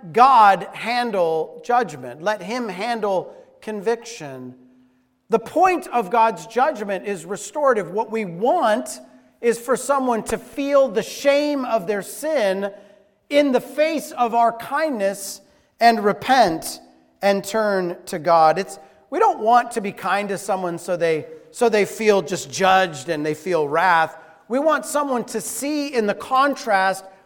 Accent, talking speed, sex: American, 145 wpm, male